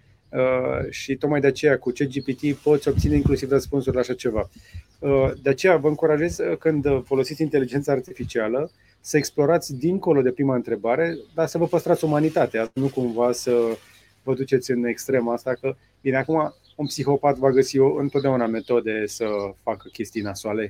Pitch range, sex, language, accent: 115-145 Hz, male, Romanian, native